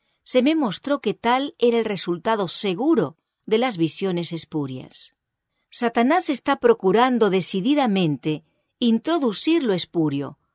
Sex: female